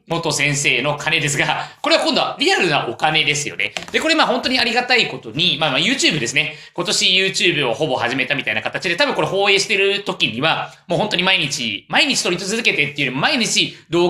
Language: Japanese